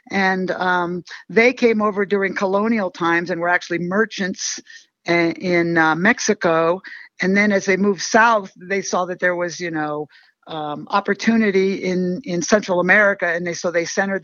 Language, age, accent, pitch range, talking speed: English, 50-69, American, 175-200 Hz, 170 wpm